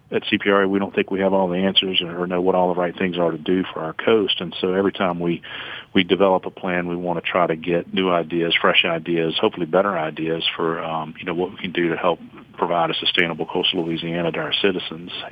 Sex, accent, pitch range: male, American, 85-100 Hz